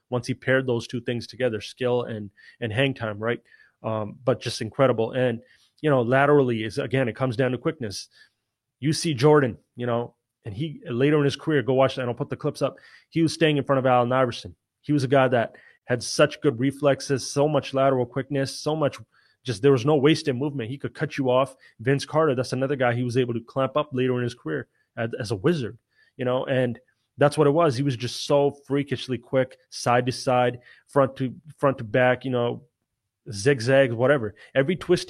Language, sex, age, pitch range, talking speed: English, male, 30-49, 120-140 Hz, 215 wpm